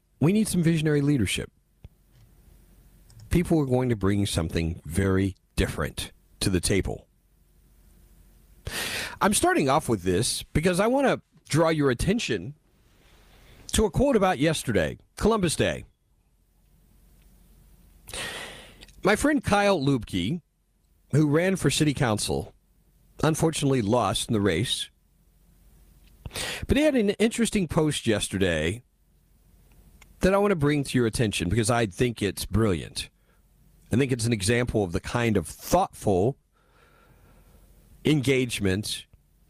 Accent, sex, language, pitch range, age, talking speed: American, male, English, 90-150 Hz, 40-59, 120 wpm